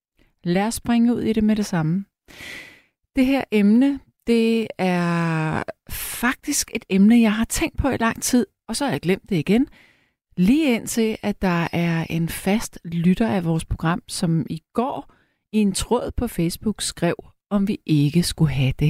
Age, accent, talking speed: 30-49, native, 180 wpm